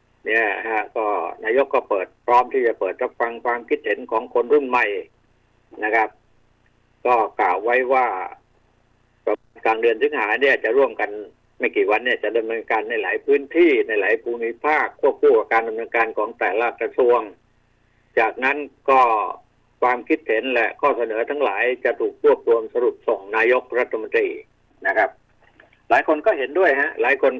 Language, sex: Thai, male